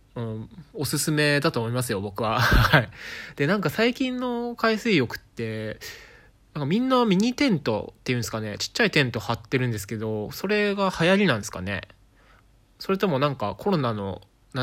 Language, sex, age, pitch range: Japanese, male, 20-39, 105-150 Hz